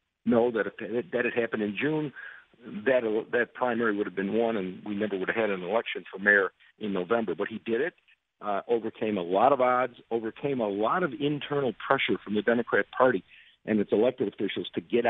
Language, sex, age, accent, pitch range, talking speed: English, male, 50-69, American, 110-150 Hz, 210 wpm